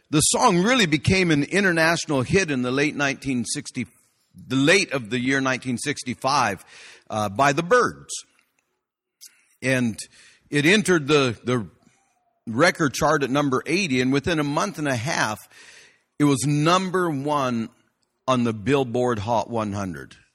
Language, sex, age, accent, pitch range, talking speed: English, male, 50-69, American, 115-150 Hz, 140 wpm